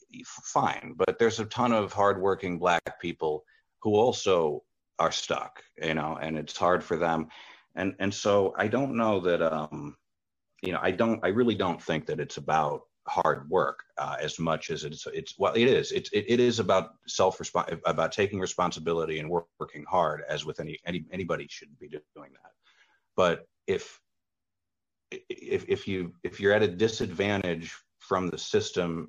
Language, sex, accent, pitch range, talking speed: English, male, American, 80-115 Hz, 175 wpm